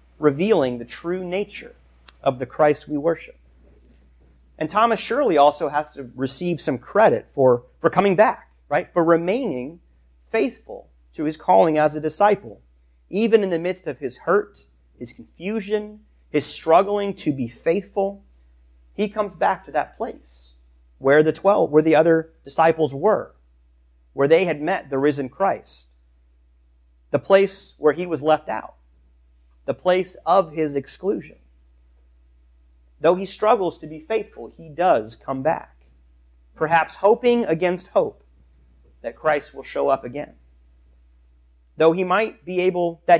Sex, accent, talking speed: male, American, 145 wpm